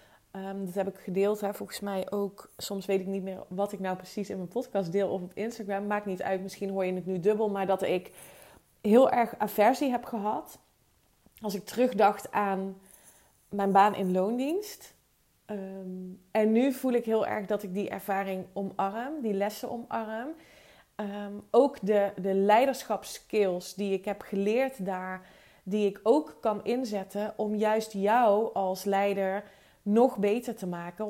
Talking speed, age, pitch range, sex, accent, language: 170 wpm, 20-39, 195-220 Hz, female, Dutch, Dutch